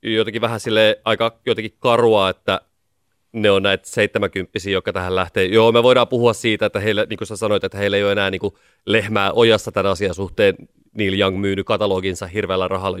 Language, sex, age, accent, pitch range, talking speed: Finnish, male, 30-49, native, 100-120 Hz, 195 wpm